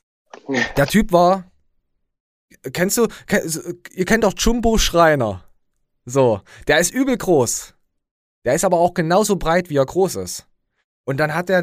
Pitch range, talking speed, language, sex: 120-175 Hz, 150 wpm, German, male